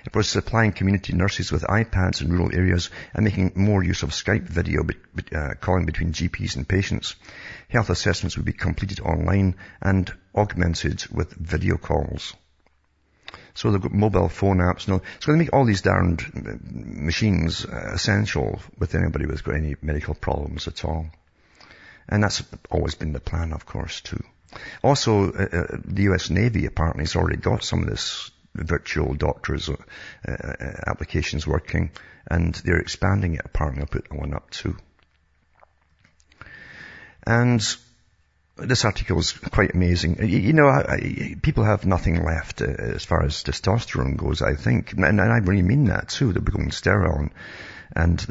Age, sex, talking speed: 50-69, male, 165 wpm